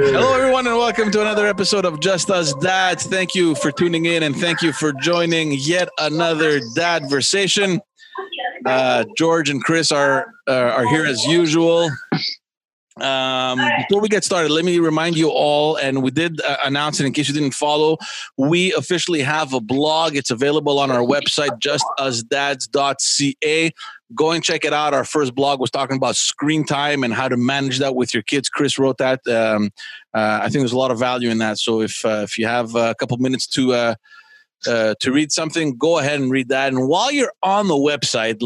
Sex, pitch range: male, 130-165 Hz